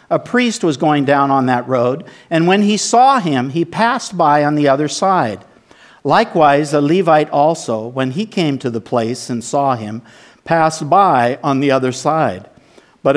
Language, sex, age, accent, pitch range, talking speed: English, male, 50-69, American, 120-170 Hz, 180 wpm